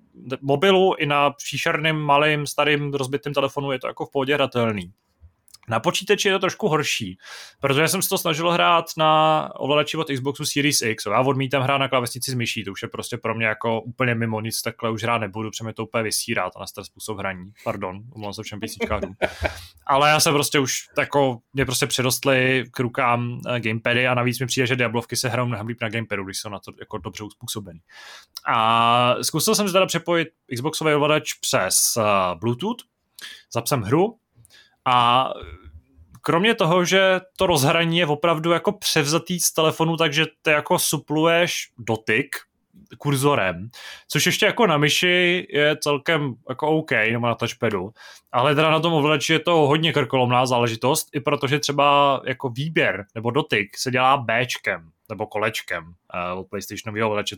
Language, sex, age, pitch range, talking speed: Czech, male, 20-39, 115-155 Hz, 170 wpm